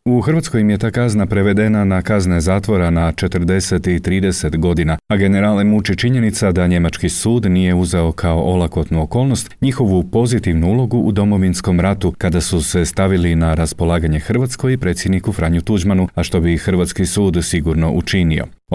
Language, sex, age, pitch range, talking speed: Croatian, male, 40-59, 85-105 Hz, 165 wpm